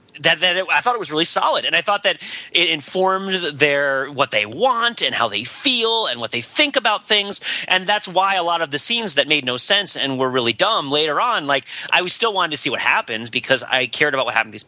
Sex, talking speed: male, 260 wpm